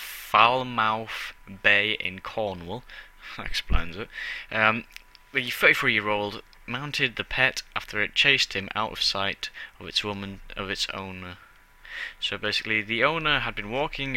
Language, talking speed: English, 140 wpm